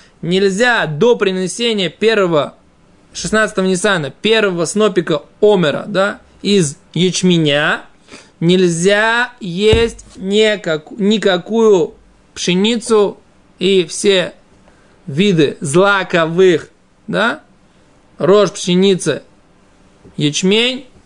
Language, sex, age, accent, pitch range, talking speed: Russian, male, 20-39, native, 175-220 Hz, 70 wpm